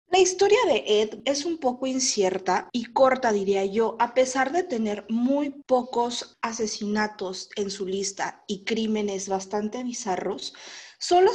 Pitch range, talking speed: 205-265 Hz, 145 wpm